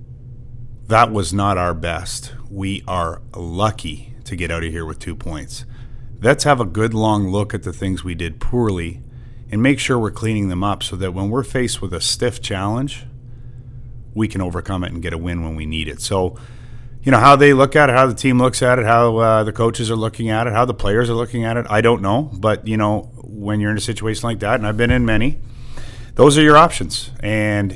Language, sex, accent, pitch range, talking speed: English, male, American, 95-120 Hz, 235 wpm